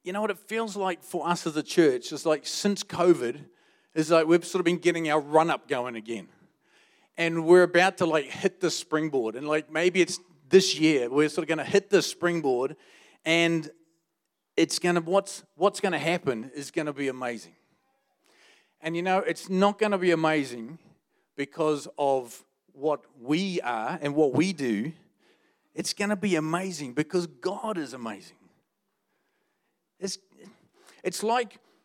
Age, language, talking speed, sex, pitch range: 40-59, English, 175 wpm, male, 160-190 Hz